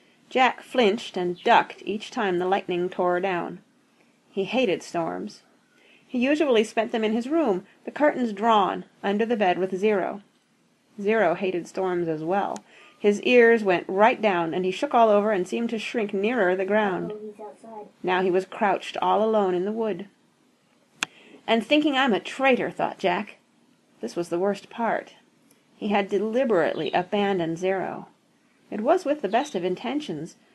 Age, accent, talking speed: 40-59, American, 165 wpm